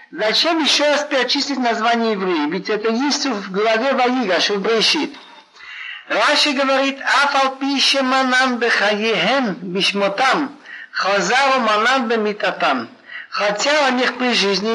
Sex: male